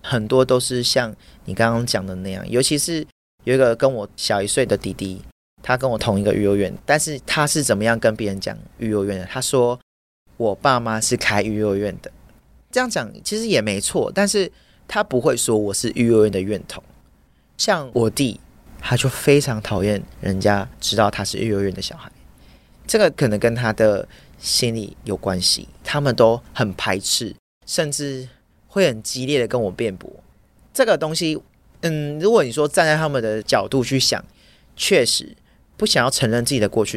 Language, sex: Chinese, male